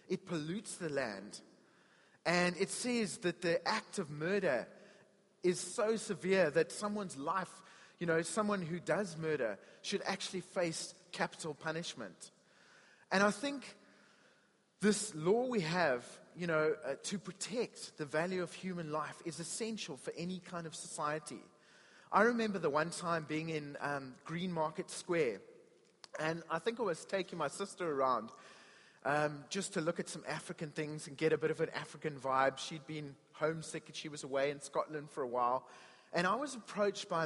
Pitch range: 155-190 Hz